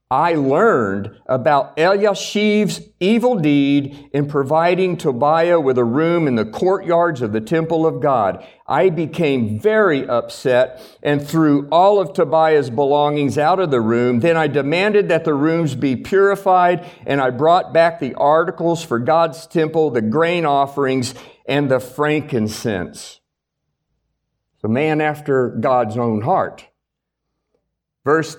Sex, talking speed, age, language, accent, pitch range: male, 135 wpm, 50-69, English, American, 140-180 Hz